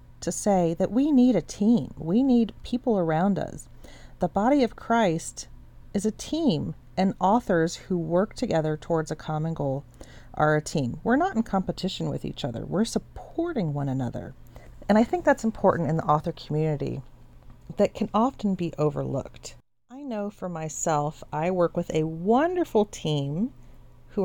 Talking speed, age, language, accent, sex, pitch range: 165 wpm, 40-59, English, American, female, 145-195 Hz